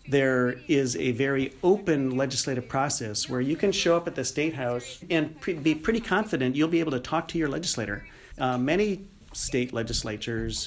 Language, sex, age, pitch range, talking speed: English, male, 40-59, 120-150 Hz, 185 wpm